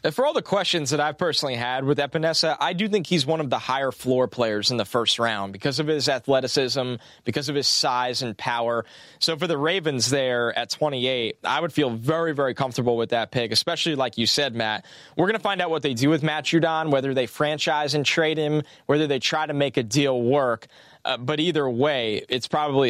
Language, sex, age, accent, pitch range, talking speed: English, male, 20-39, American, 125-165 Hz, 225 wpm